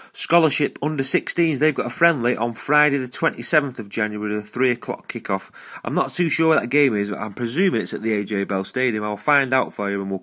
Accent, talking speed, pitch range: British, 245 wpm, 100-130 Hz